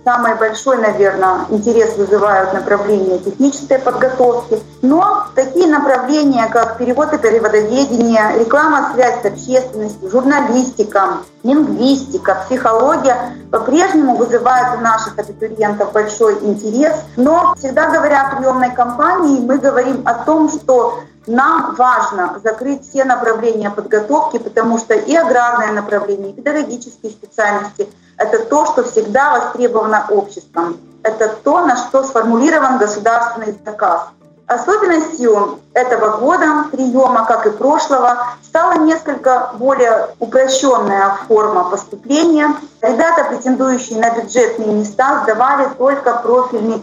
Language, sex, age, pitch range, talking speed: Russian, female, 30-49, 215-280 Hz, 115 wpm